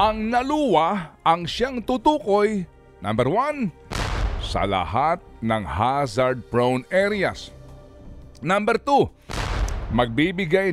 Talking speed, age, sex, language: 90 wpm, 50-69, male, Filipino